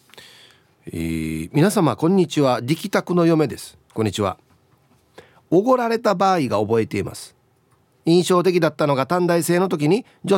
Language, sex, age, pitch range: Japanese, male, 40-59, 130-205 Hz